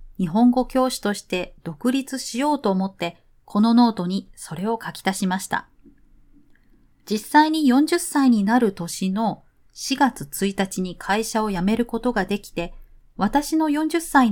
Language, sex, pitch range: Japanese, female, 185-255 Hz